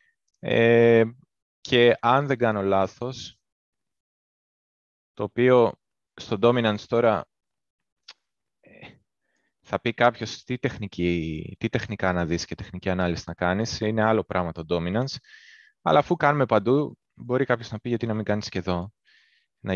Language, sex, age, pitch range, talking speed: Greek, male, 20-39, 95-120 Hz, 140 wpm